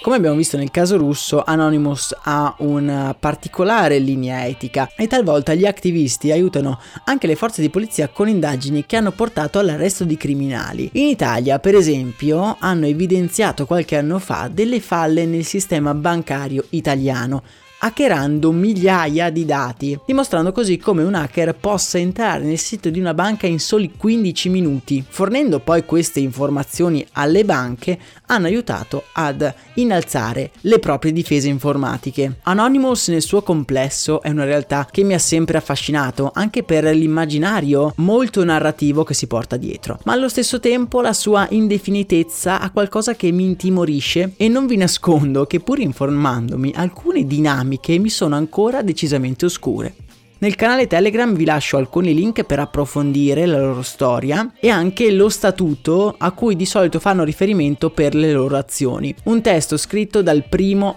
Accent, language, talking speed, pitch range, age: native, Italian, 155 wpm, 145-195 Hz, 20-39